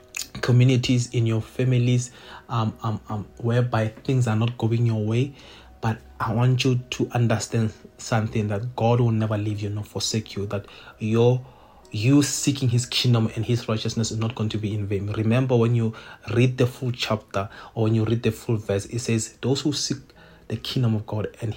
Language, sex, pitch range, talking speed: English, male, 110-125 Hz, 195 wpm